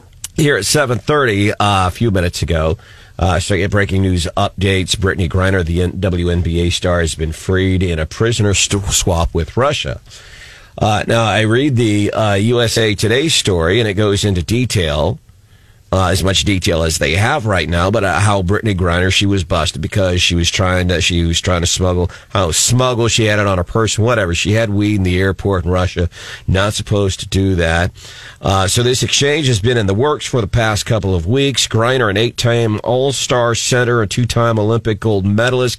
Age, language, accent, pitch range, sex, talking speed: 40-59, English, American, 95-120 Hz, male, 195 wpm